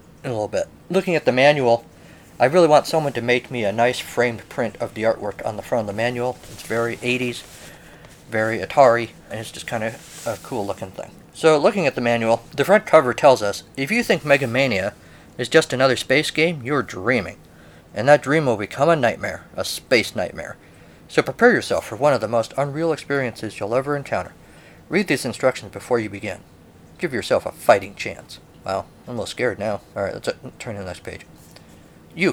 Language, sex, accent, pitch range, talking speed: English, male, American, 110-140 Hz, 205 wpm